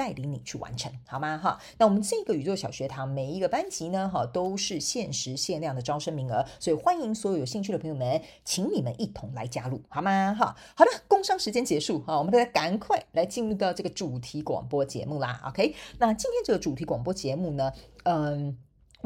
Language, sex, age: Chinese, female, 40-59